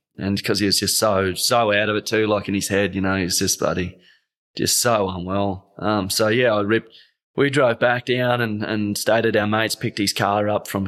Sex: male